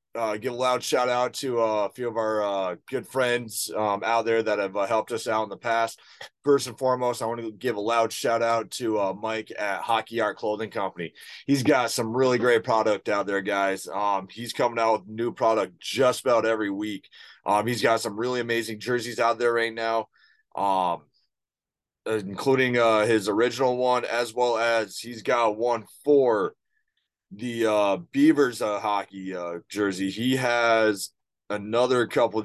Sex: male